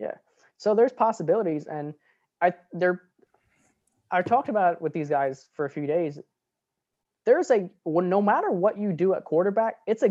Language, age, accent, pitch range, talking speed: English, 20-39, American, 155-195 Hz, 170 wpm